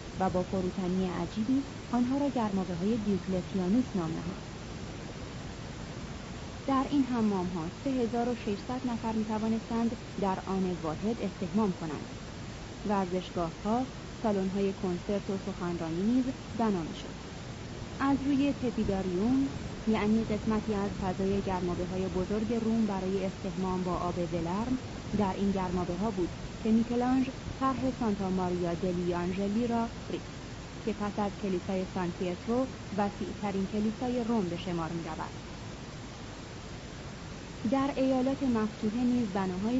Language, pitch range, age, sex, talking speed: Persian, 185-240 Hz, 30-49, female, 120 wpm